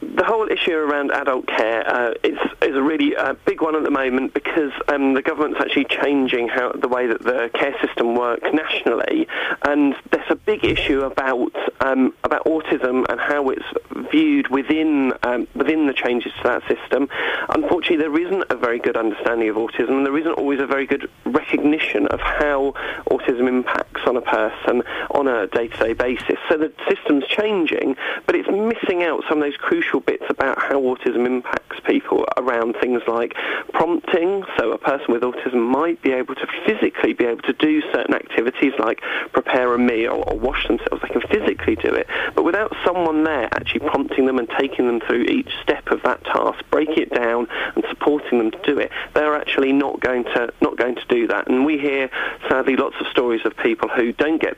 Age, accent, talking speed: 40-59, British, 195 wpm